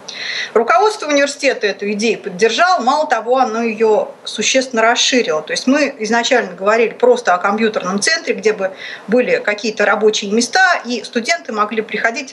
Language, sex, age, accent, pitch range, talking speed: Russian, female, 30-49, native, 210-260 Hz, 145 wpm